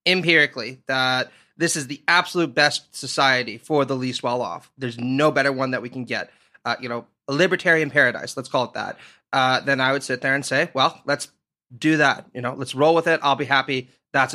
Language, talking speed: English, 220 wpm